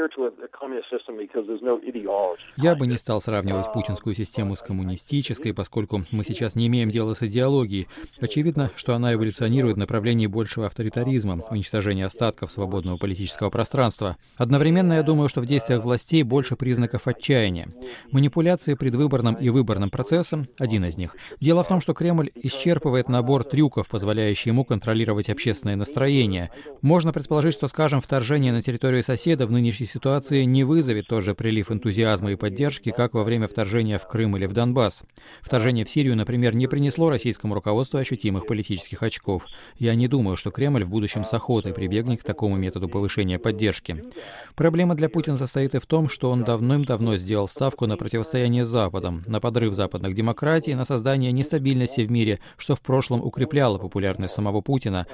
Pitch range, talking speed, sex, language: 105-135 Hz, 160 wpm, male, Russian